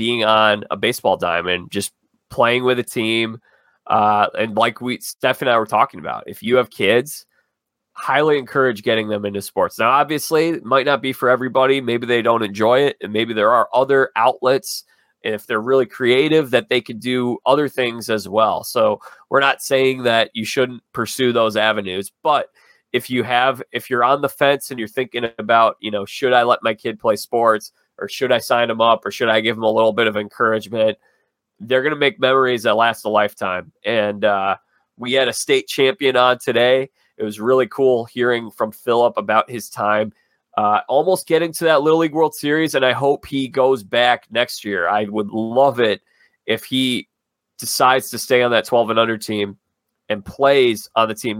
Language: English